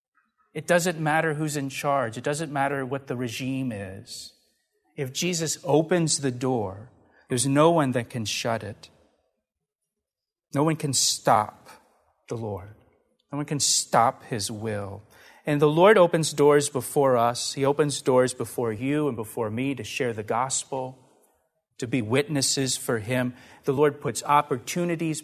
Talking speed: 155 wpm